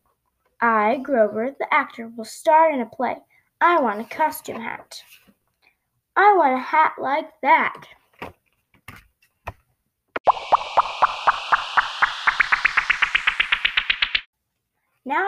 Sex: female